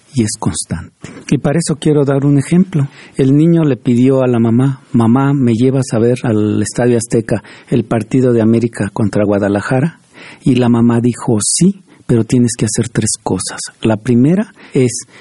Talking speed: 180 wpm